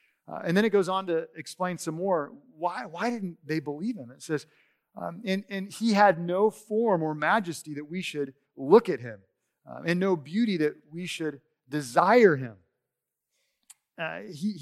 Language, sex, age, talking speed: English, male, 40-59, 180 wpm